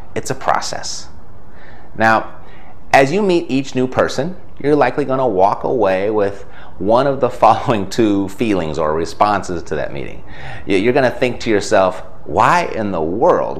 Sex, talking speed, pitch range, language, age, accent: male, 170 wpm, 90-150 Hz, English, 30-49, American